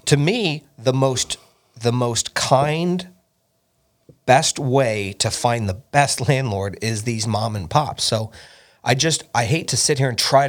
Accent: American